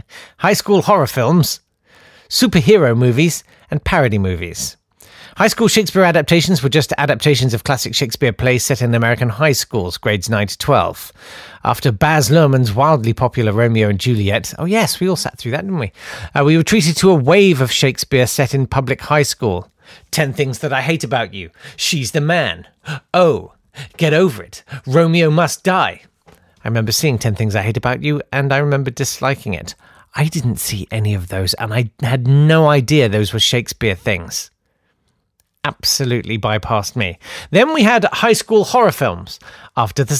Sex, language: male, English